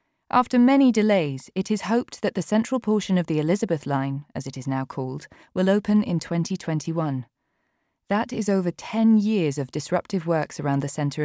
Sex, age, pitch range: female, 20-39, 155-205 Hz